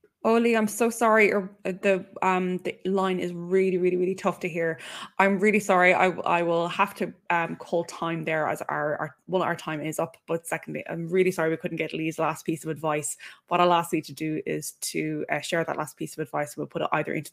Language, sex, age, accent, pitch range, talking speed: English, female, 20-39, Irish, 155-190 Hz, 240 wpm